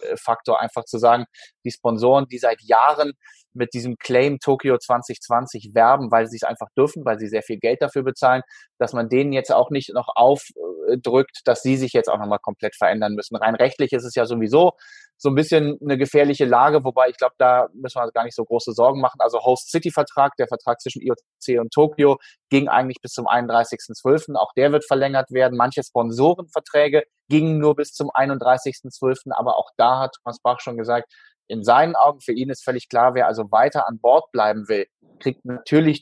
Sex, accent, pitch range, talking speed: male, German, 120-140 Hz, 200 wpm